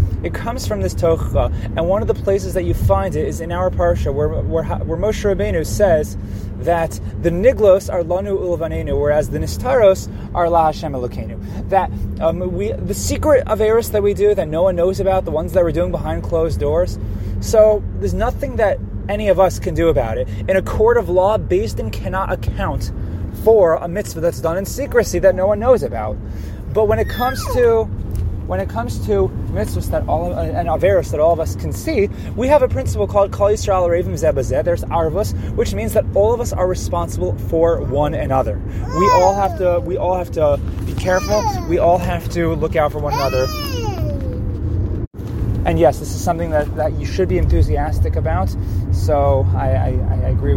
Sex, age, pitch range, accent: male, 20-39, 90-150 Hz, American